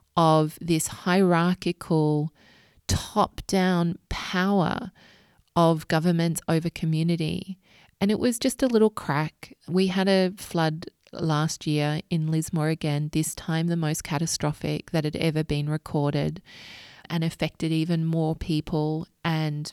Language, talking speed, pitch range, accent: English, 125 wpm, 155-185 Hz, Australian